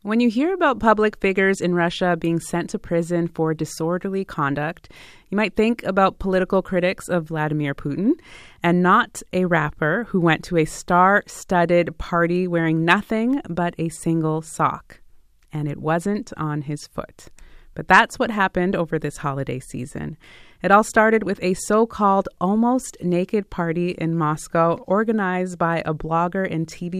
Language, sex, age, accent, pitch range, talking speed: English, female, 30-49, American, 160-195 Hz, 155 wpm